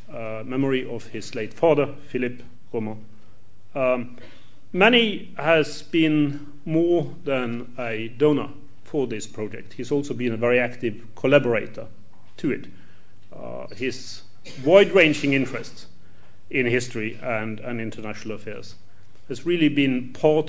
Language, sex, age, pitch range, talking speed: English, male, 40-59, 110-150 Hz, 125 wpm